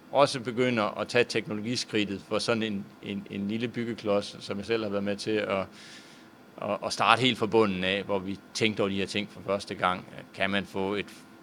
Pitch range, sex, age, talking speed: 100-115 Hz, male, 30-49, 215 wpm